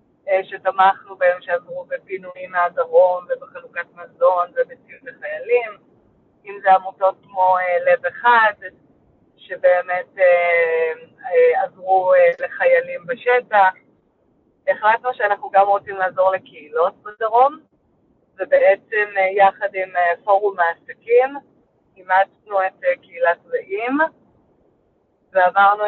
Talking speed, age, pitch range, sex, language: 85 wpm, 30-49, 180-255 Hz, female, Hebrew